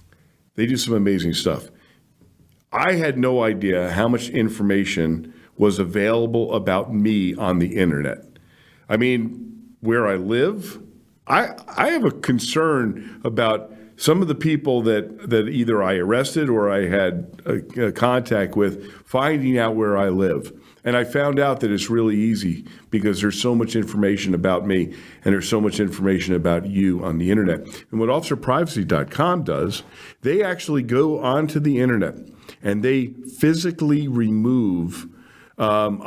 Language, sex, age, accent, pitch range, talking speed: English, male, 50-69, American, 100-125 Hz, 150 wpm